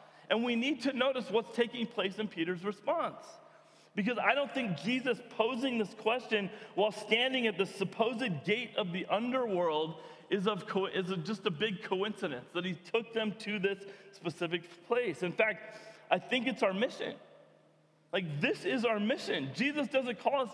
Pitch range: 195-260 Hz